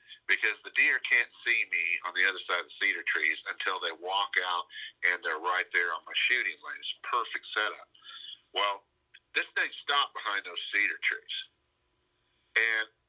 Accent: American